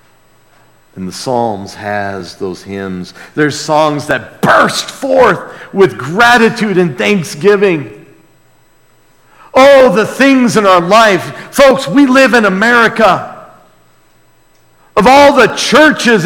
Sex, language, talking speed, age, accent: male, English, 110 wpm, 50-69, American